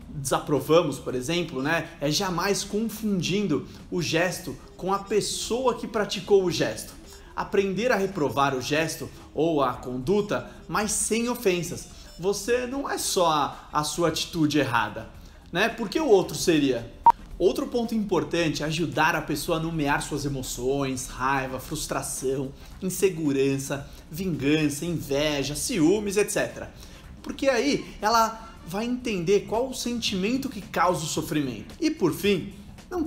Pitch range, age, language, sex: 140-210 Hz, 30-49, Portuguese, male